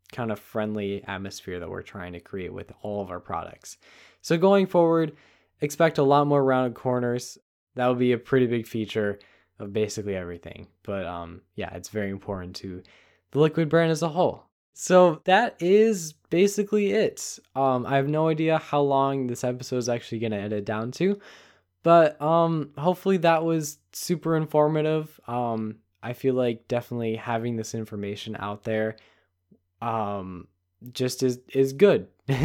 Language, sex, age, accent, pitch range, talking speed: English, male, 10-29, American, 105-150 Hz, 165 wpm